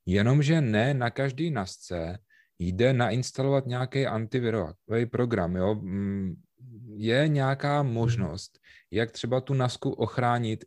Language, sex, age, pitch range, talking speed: Czech, male, 30-49, 95-115 Hz, 100 wpm